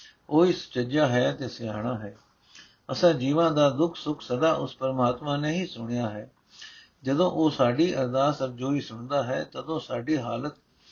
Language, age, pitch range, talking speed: Punjabi, 60-79, 125-155 Hz, 160 wpm